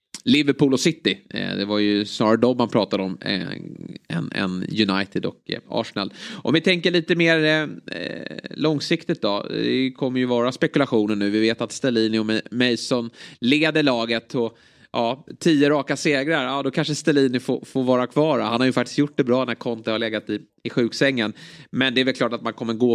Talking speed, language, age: 190 wpm, Swedish, 30-49